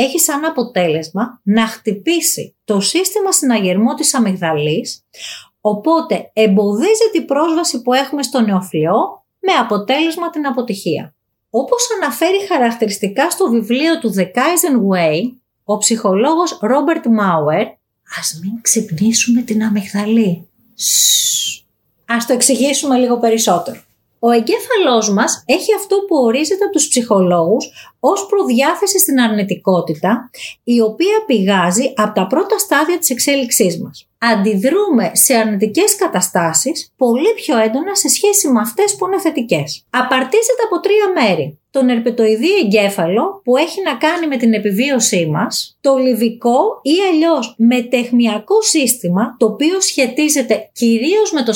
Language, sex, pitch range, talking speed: Greek, female, 210-310 Hz, 130 wpm